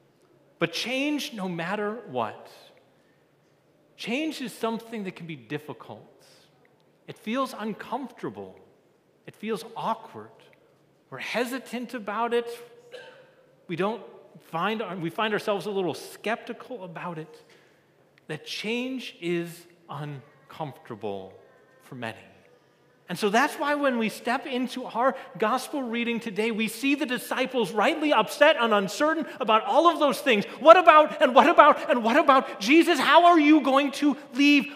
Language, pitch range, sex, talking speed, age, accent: English, 175-260 Hz, male, 140 wpm, 40-59, American